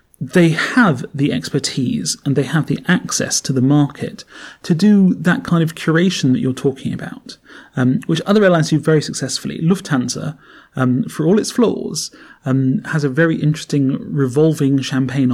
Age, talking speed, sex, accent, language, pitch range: 30-49, 165 wpm, male, British, English, 130-180 Hz